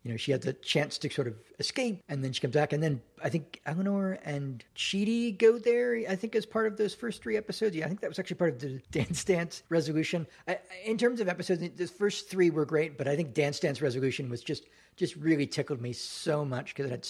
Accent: American